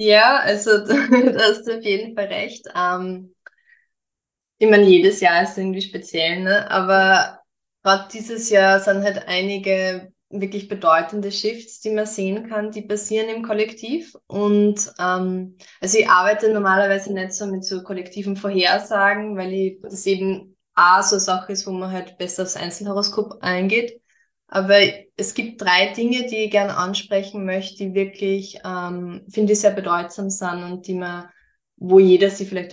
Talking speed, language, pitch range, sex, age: 160 wpm, German, 185-210 Hz, female, 20-39